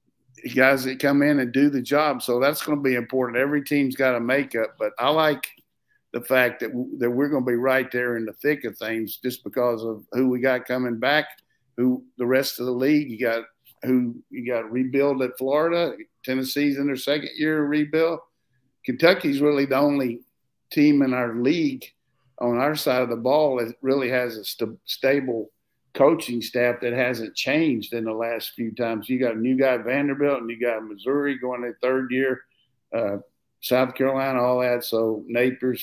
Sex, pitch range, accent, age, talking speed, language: male, 120-135 Hz, American, 50-69, 200 wpm, English